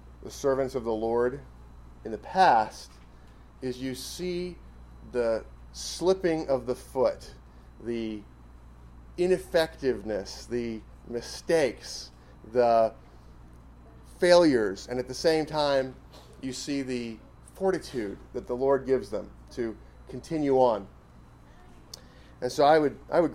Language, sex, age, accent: English, male, 30-49, American